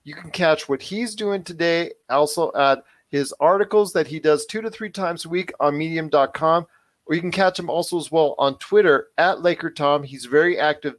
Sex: male